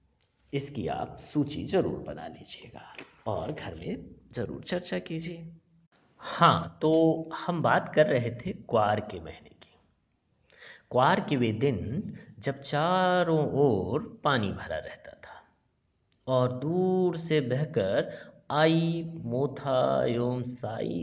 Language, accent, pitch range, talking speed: Hindi, native, 120-165 Hz, 115 wpm